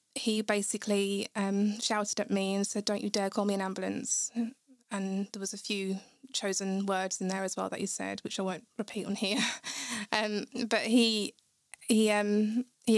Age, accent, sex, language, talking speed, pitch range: 20-39, British, female, English, 190 wpm, 205-230 Hz